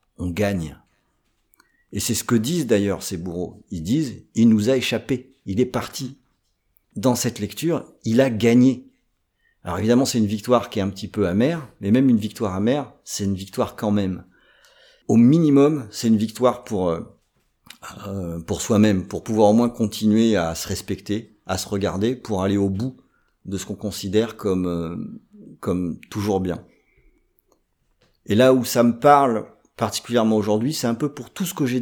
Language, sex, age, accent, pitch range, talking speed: French, male, 50-69, French, 100-125 Hz, 180 wpm